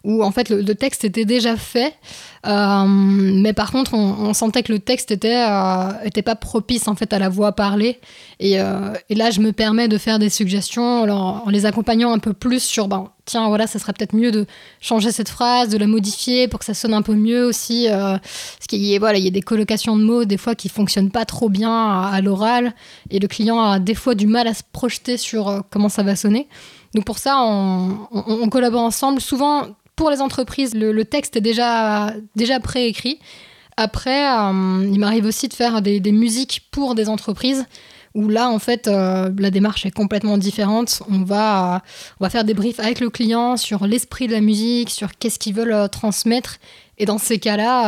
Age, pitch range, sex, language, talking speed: 20-39, 205-235 Hz, female, French, 215 wpm